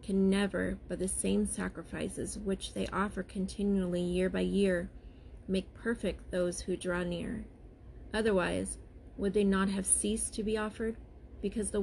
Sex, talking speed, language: female, 150 wpm, English